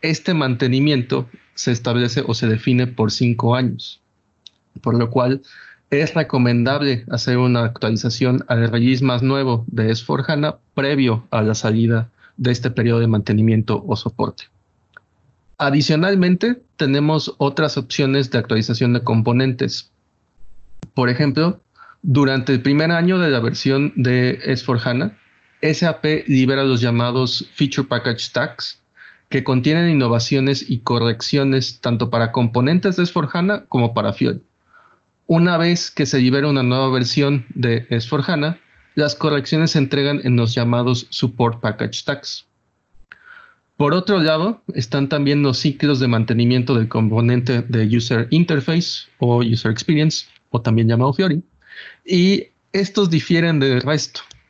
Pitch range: 120-150 Hz